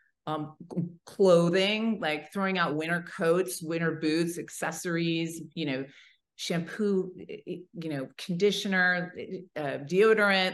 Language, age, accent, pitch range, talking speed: English, 40-59, American, 145-175 Hz, 100 wpm